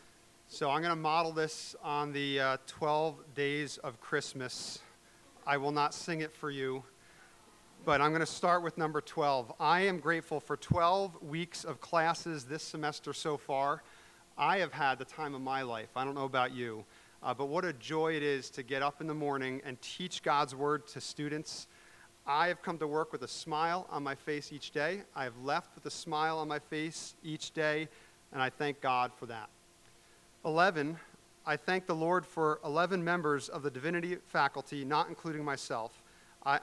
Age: 40-59